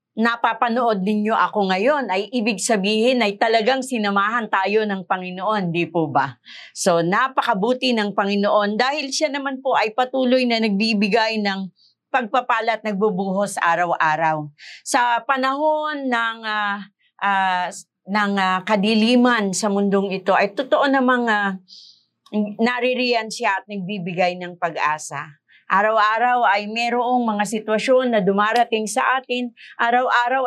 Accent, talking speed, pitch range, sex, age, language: native, 125 wpm, 200-245 Hz, female, 40-59, Filipino